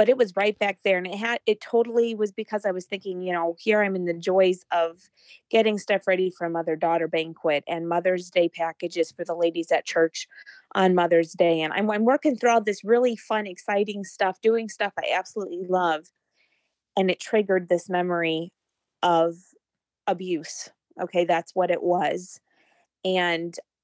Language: English